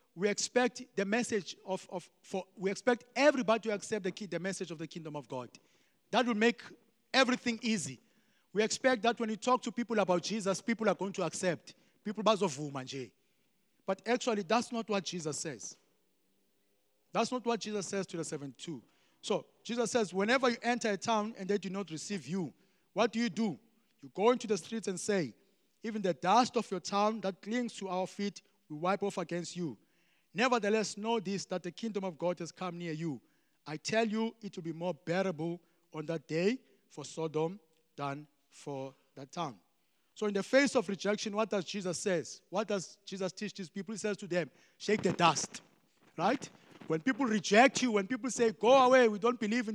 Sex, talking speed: male, 200 wpm